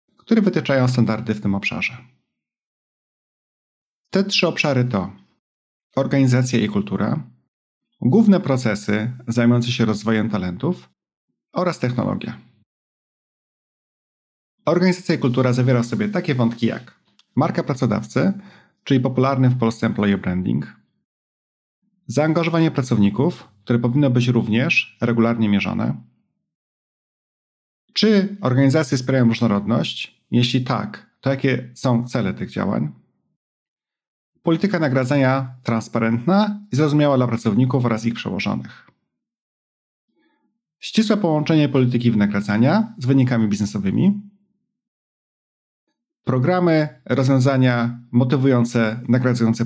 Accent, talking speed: native, 95 wpm